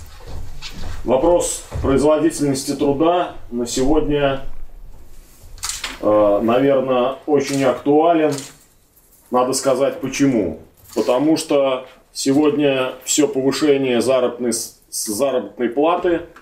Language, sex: Russian, male